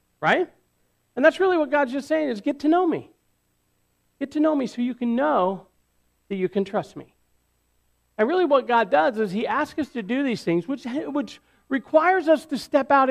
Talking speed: 210 wpm